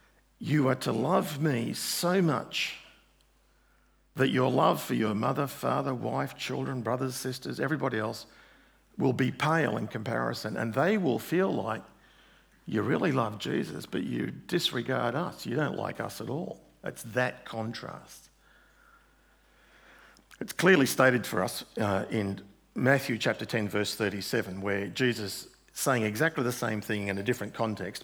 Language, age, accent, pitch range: English, 50-69, Australian, 105-135 Hz